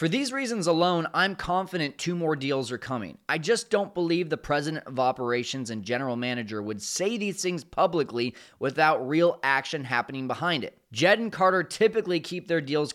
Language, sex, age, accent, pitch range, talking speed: English, male, 20-39, American, 130-180 Hz, 185 wpm